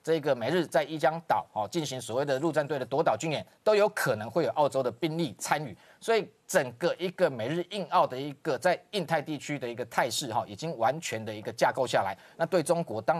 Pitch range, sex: 130-180 Hz, male